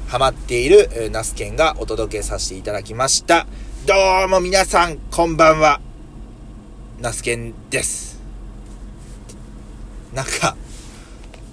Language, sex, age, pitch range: Japanese, male, 20-39, 120-175 Hz